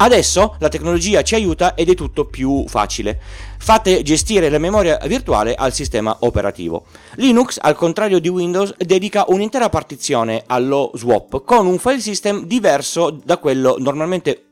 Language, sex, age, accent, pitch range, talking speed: Italian, male, 30-49, native, 120-185 Hz, 150 wpm